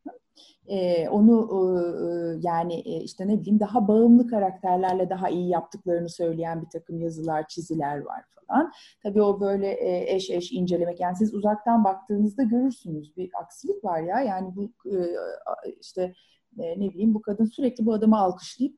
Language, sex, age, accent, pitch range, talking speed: Turkish, female, 40-59, native, 180-250 Hz, 160 wpm